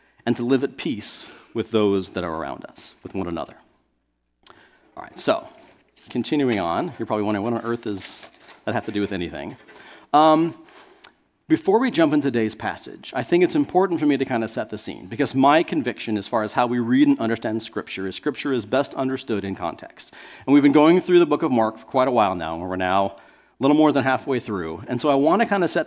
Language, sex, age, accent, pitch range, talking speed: English, male, 40-59, American, 110-150 Hz, 235 wpm